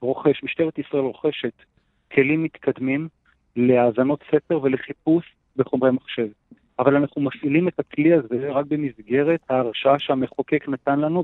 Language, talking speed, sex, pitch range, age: English, 125 wpm, male, 130-155 Hz, 40-59